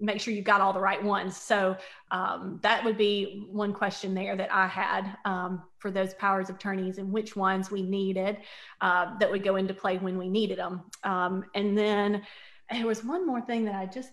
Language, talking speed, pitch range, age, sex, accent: English, 215 wpm, 195-230 Hz, 30-49, female, American